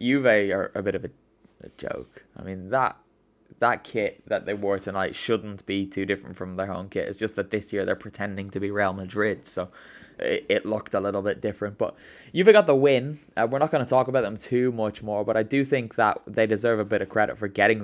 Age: 10-29